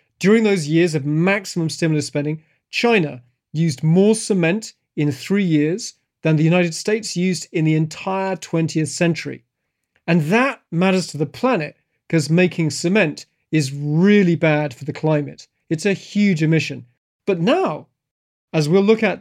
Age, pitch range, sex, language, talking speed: 40-59, 150-180 Hz, male, English, 155 wpm